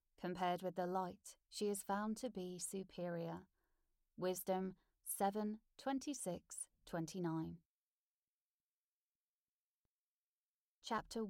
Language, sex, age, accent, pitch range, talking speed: English, female, 30-49, British, 175-225 Hz, 80 wpm